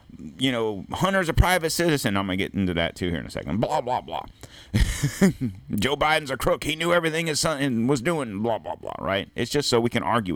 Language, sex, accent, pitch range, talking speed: English, male, American, 85-120 Hz, 245 wpm